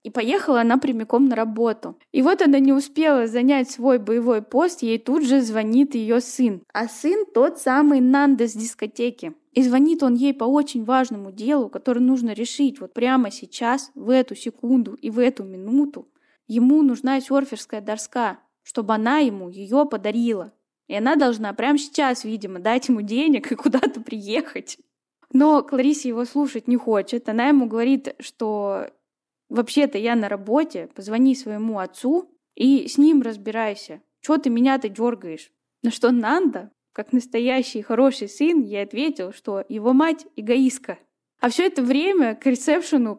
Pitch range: 230-280 Hz